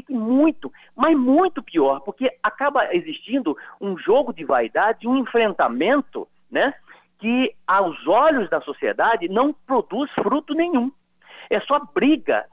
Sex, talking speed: male, 125 wpm